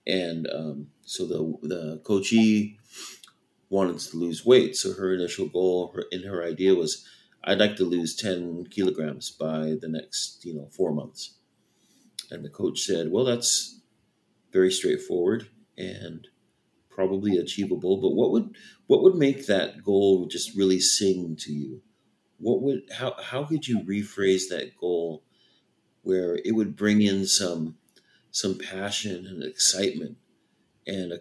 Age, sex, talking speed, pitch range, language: 40-59, male, 150 wpm, 90-110 Hz, English